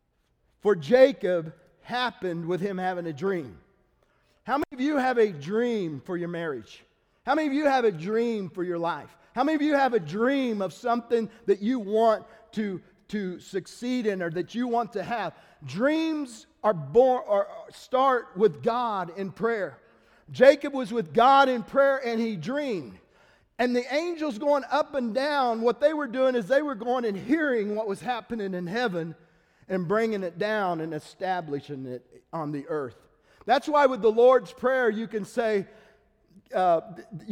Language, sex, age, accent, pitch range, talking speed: English, male, 40-59, American, 190-260 Hz, 175 wpm